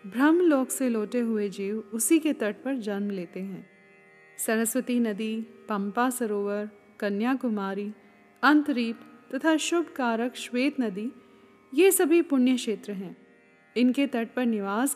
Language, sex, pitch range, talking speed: Hindi, female, 210-280 Hz, 130 wpm